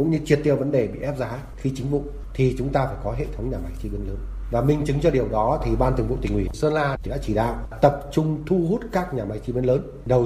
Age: 20-39